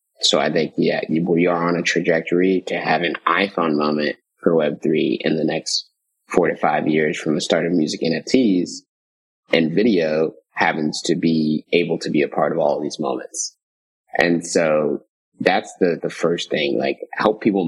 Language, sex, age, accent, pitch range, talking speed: English, male, 30-49, American, 80-100 Hz, 185 wpm